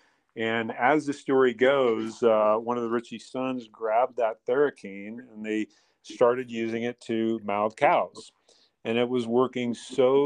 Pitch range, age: 110-130 Hz, 40-59